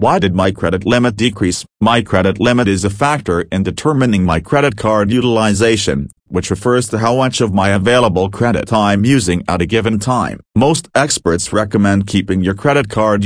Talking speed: 180 wpm